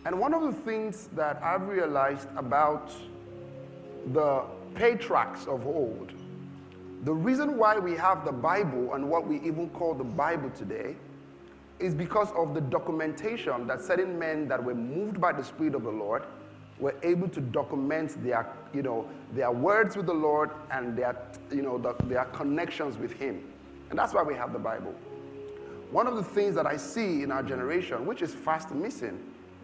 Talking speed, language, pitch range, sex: 170 wpm, English, 125-185 Hz, male